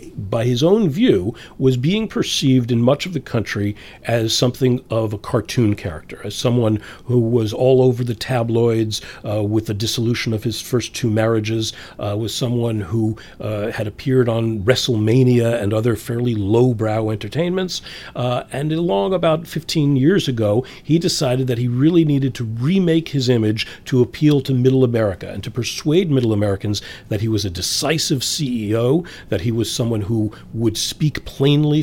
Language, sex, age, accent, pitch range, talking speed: English, male, 40-59, American, 110-130 Hz, 170 wpm